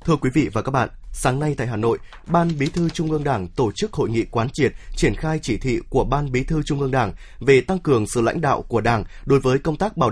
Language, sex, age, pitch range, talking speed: Vietnamese, male, 20-39, 120-160 Hz, 280 wpm